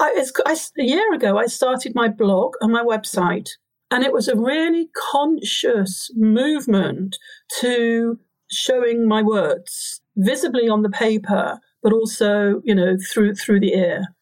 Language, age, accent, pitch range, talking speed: English, 50-69, British, 195-245 Hz, 145 wpm